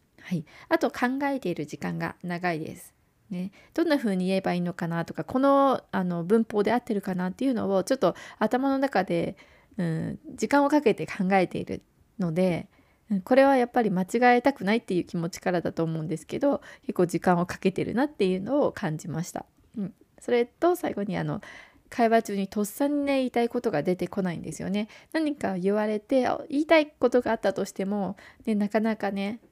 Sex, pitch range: female, 180-245 Hz